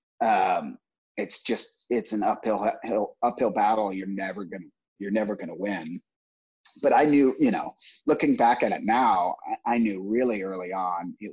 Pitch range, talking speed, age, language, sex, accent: 100-135 Hz, 165 wpm, 30-49, English, male, American